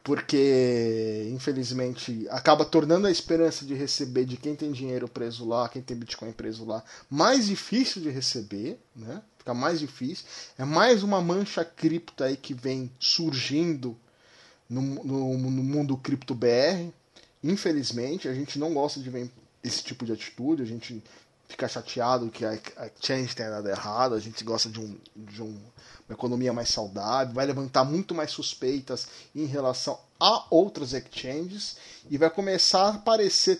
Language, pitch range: Portuguese, 125-165 Hz